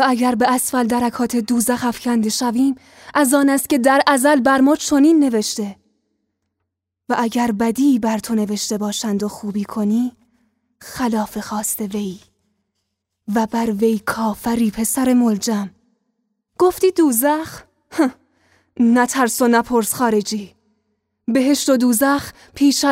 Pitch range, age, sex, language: 205-255 Hz, 10-29, female, Persian